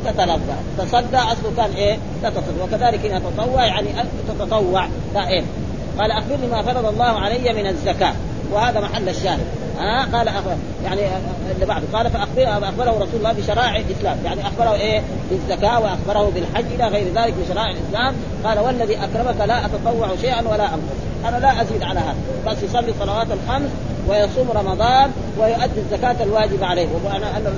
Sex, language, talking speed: female, Arabic, 155 wpm